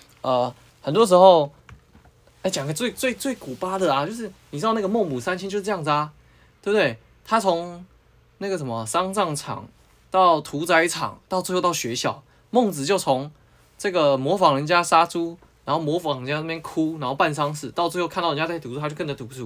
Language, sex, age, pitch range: Chinese, male, 20-39, 115-160 Hz